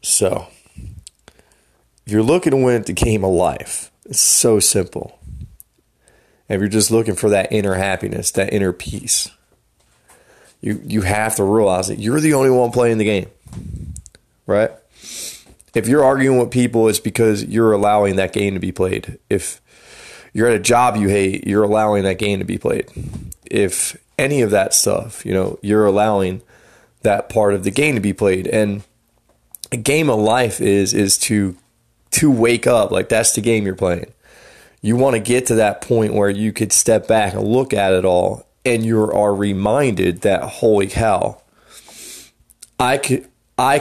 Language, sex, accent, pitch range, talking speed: English, male, American, 100-120 Hz, 175 wpm